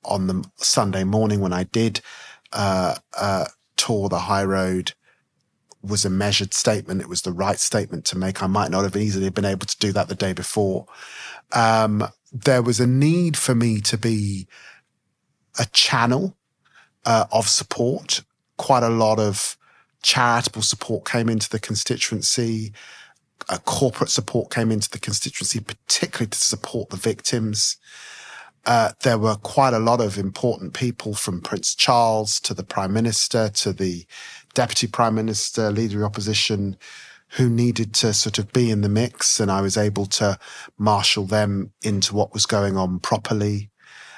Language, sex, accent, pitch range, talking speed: English, male, British, 100-115 Hz, 160 wpm